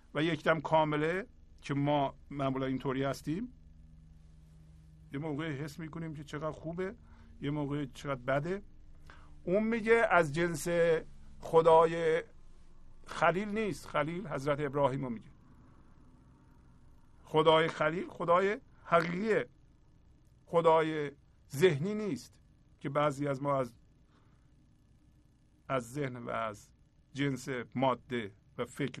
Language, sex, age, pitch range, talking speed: Persian, male, 50-69, 130-165 Hz, 100 wpm